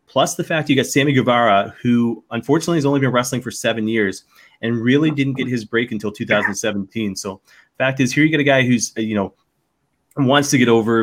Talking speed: 210 wpm